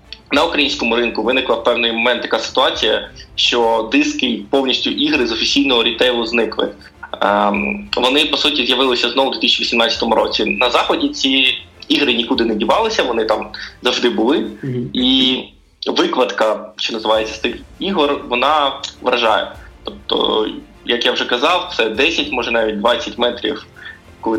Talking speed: 140 wpm